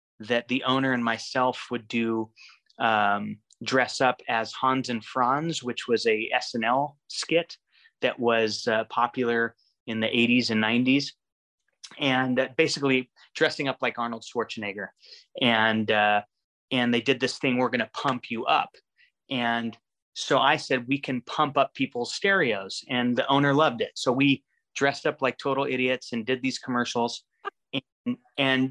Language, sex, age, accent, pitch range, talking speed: English, male, 30-49, American, 120-140 Hz, 155 wpm